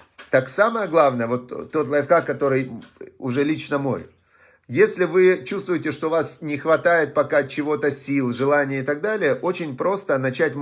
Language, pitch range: Russian, 140-170 Hz